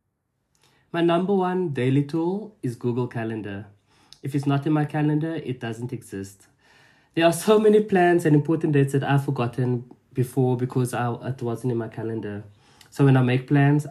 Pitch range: 115-145 Hz